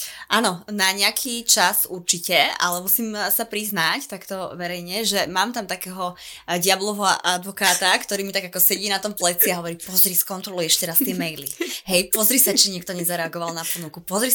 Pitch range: 180-215 Hz